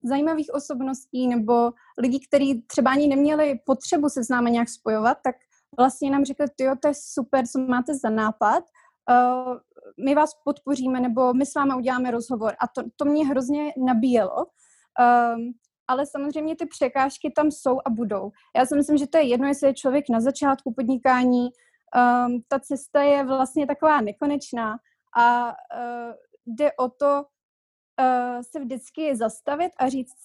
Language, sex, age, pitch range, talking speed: Slovak, female, 20-39, 245-290 Hz, 155 wpm